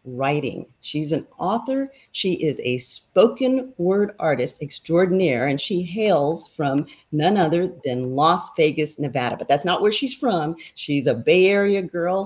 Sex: female